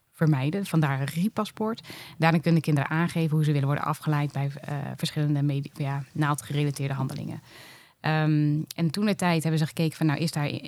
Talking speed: 180 wpm